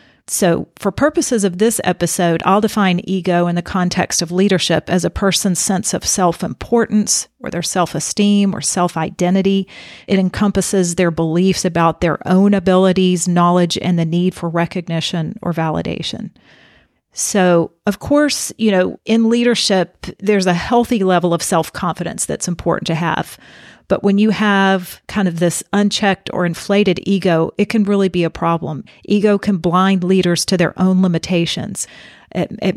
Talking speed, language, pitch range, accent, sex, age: 155 wpm, English, 175-200 Hz, American, female, 40-59